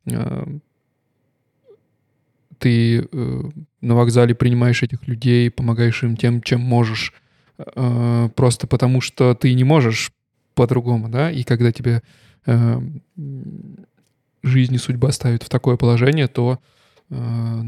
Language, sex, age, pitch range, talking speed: Russian, male, 20-39, 120-135 Hz, 110 wpm